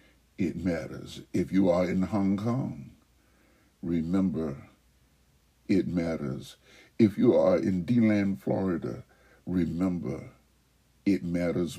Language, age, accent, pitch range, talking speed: English, 60-79, American, 85-100 Hz, 100 wpm